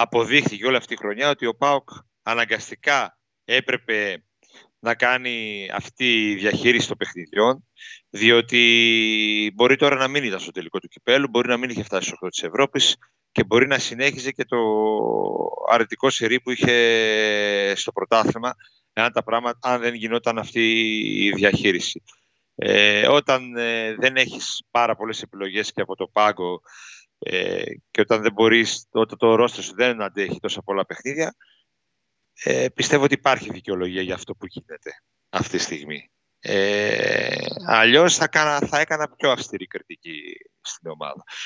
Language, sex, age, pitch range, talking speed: Greek, male, 40-59, 110-130 Hz, 140 wpm